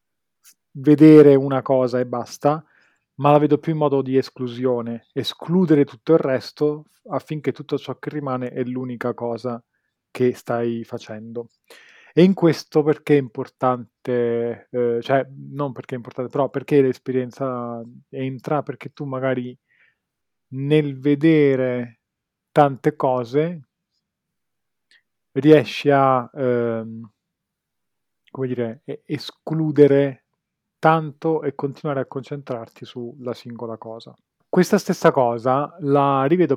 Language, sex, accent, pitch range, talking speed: Italian, male, native, 125-145 Hz, 110 wpm